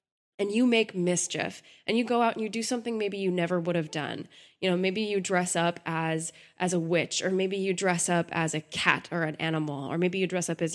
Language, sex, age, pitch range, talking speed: English, female, 20-39, 160-195 Hz, 250 wpm